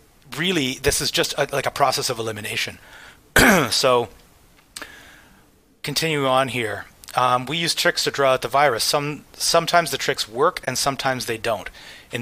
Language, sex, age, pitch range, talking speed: English, male, 30-49, 115-150 Hz, 160 wpm